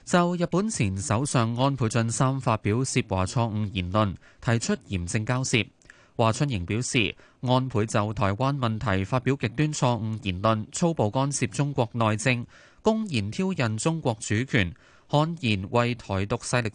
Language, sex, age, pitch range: Chinese, male, 20-39, 105-145 Hz